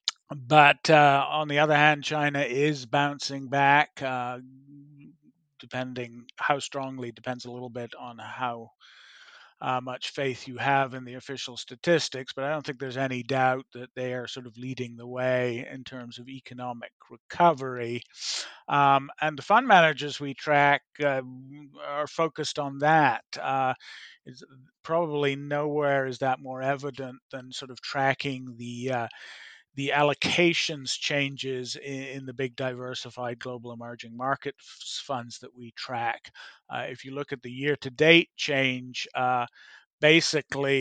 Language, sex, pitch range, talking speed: English, male, 125-145 Hz, 145 wpm